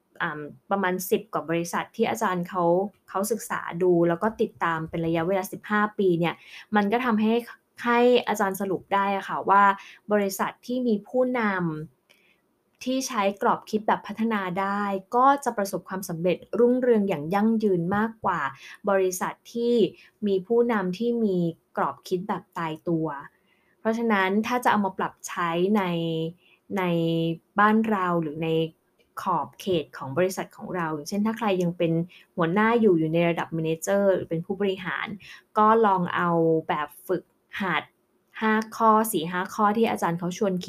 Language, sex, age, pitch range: Thai, female, 20-39, 175-210 Hz